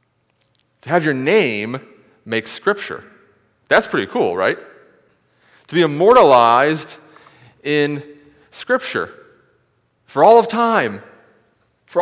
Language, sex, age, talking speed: English, male, 40-59, 100 wpm